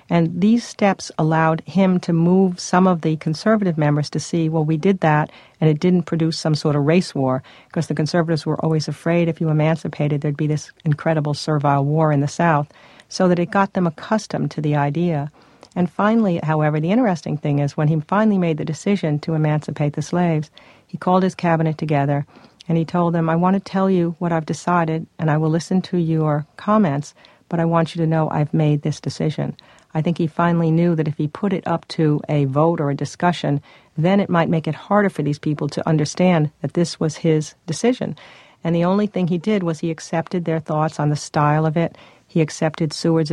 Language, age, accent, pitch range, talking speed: English, 50-69, American, 150-175 Hz, 220 wpm